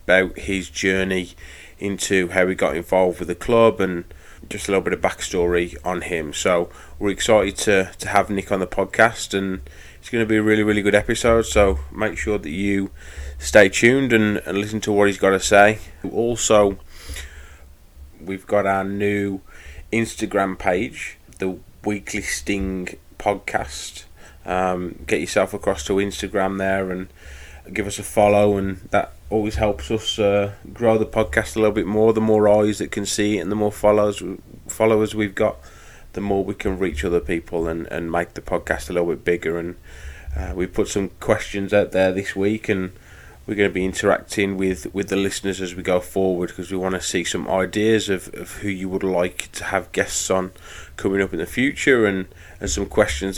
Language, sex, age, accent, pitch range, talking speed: English, male, 20-39, British, 85-105 Hz, 195 wpm